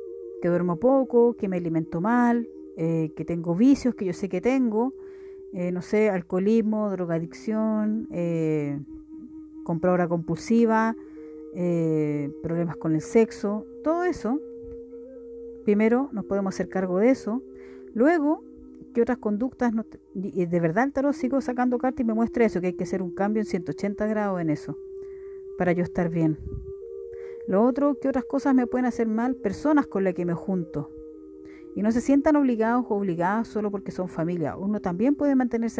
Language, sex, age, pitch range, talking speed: Spanish, female, 50-69, 175-250 Hz, 170 wpm